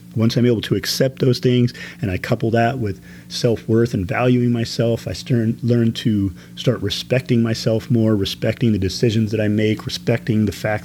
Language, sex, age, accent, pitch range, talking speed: English, male, 30-49, American, 100-120 Hz, 175 wpm